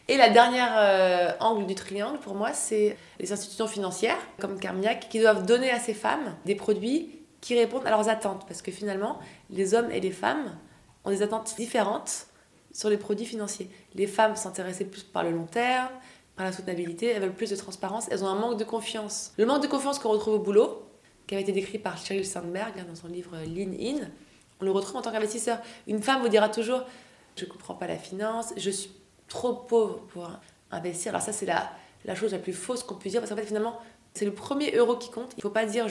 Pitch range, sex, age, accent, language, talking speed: 195-230 Hz, female, 20-39, French, French, 230 wpm